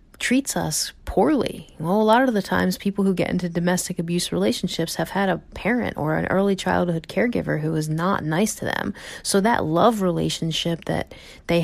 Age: 30-49